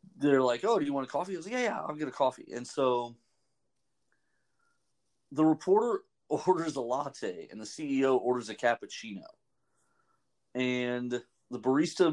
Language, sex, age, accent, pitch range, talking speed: English, male, 30-49, American, 120-145 Hz, 165 wpm